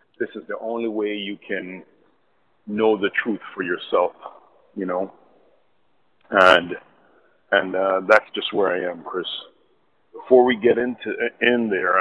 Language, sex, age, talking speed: English, male, 40-59, 145 wpm